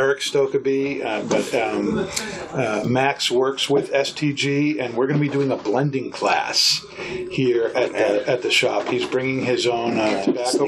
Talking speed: 155 wpm